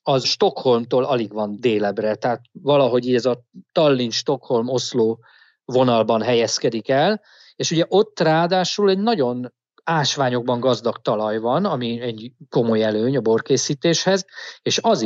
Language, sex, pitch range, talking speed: Hungarian, male, 120-155 Hz, 130 wpm